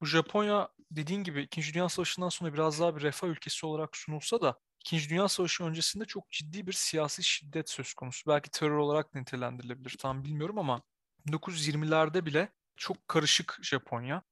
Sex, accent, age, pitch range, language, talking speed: male, native, 30-49, 150-185 Hz, Turkish, 160 wpm